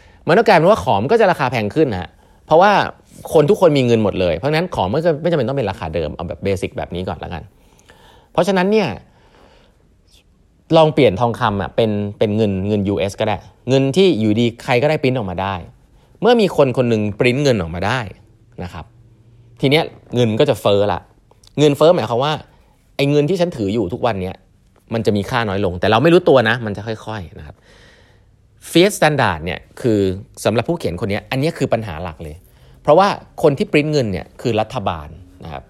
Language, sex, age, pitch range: Thai, male, 30-49, 95-135 Hz